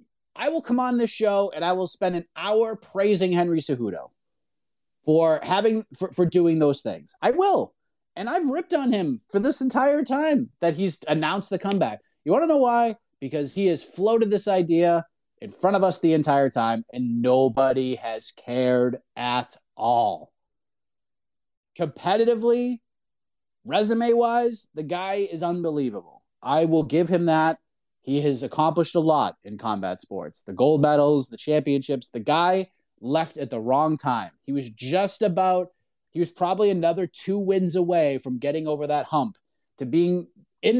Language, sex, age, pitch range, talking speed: English, male, 30-49, 140-195 Hz, 165 wpm